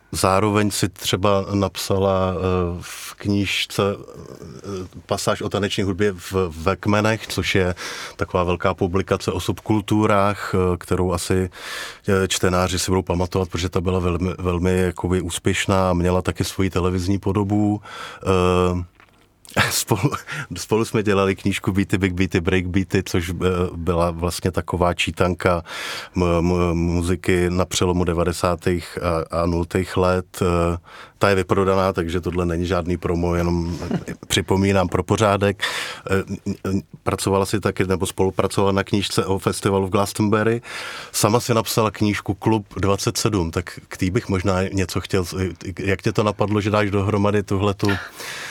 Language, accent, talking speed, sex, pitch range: Czech, native, 125 wpm, male, 90-100 Hz